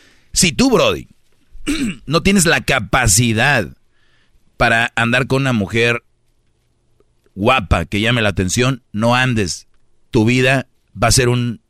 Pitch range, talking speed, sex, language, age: 115-135 Hz, 130 wpm, male, Spanish, 40-59